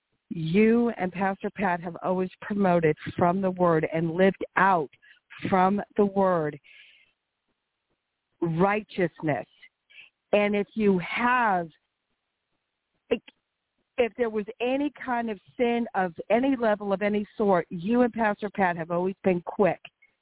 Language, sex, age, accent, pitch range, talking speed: English, female, 50-69, American, 185-230 Hz, 125 wpm